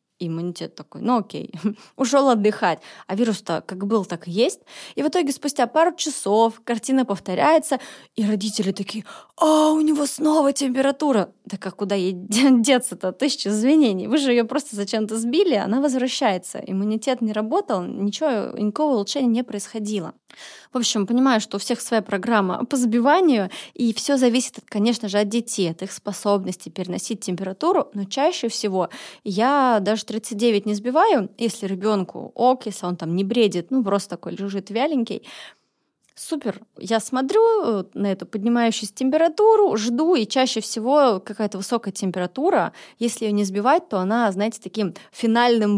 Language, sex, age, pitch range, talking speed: Russian, female, 20-39, 200-260 Hz, 155 wpm